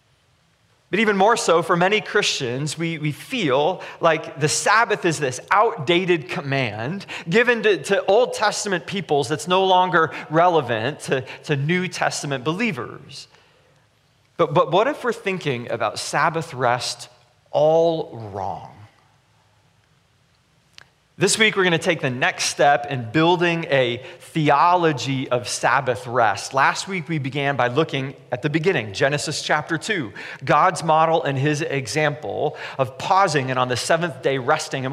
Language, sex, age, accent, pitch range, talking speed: English, male, 30-49, American, 135-175 Hz, 145 wpm